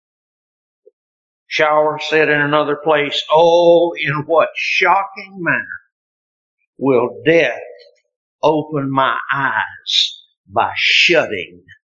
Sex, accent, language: male, American, English